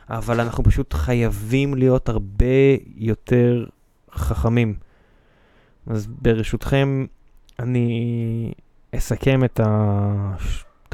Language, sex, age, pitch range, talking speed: Hebrew, male, 20-39, 110-130 Hz, 80 wpm